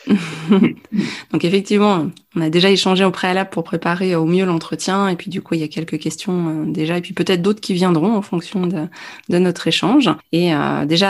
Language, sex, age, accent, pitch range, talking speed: French, female, 20-39, French, 160-190 Hz, 205 wpm